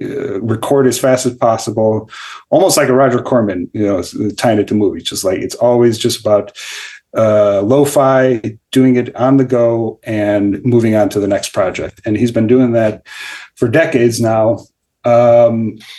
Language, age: English, 40-59